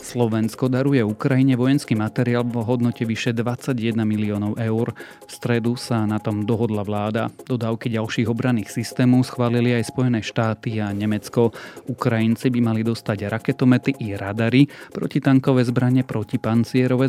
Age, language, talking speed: 30-49, Slovak, 135 wpm